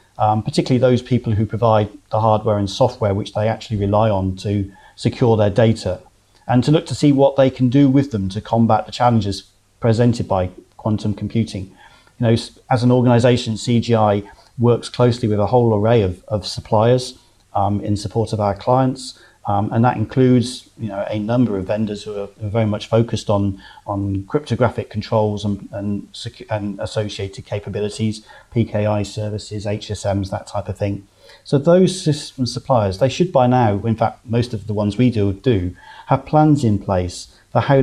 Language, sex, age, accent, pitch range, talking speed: English, male, 40-59, British, 105-125 Hz, 180 wpm